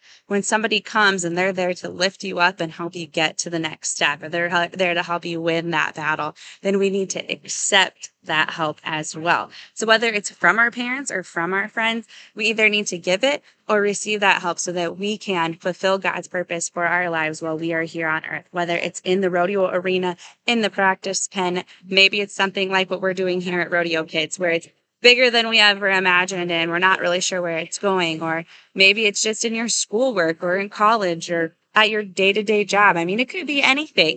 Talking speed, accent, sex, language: 225 wpm, American, female, English